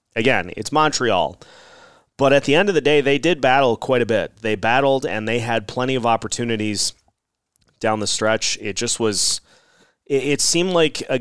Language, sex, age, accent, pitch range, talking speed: English, male, 30-49, American, 100-125 Hz, 180 wpm